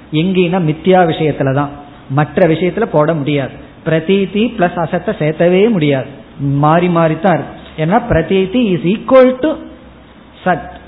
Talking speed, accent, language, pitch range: 115 wpm, native, Tamil, 155-210 Hz